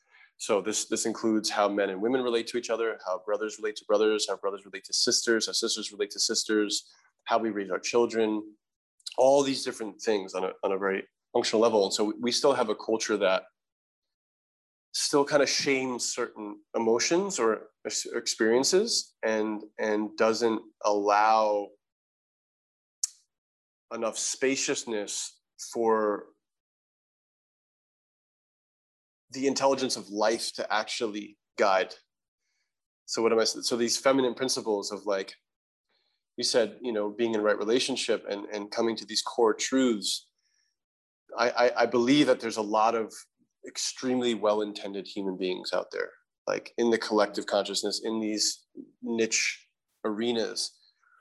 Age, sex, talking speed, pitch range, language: 20-39, male, 145 wpm, 105-125 Hz, English